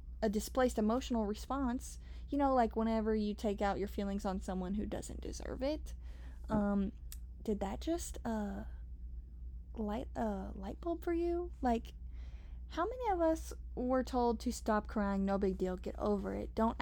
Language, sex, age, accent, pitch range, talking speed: English, female, 20-39, American, 195-235 Hz, 170 wpm